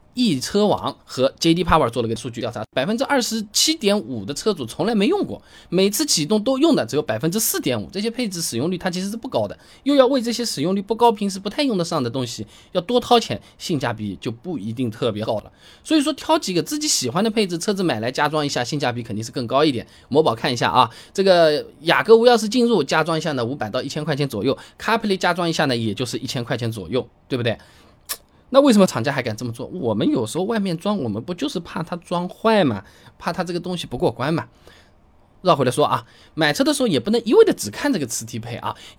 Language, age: Chinese, 20-39